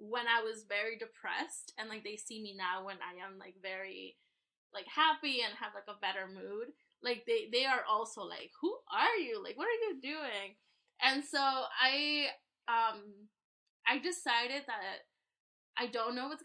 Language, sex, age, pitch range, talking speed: English, female, 10-29, 205-265 Hz, 180 wpm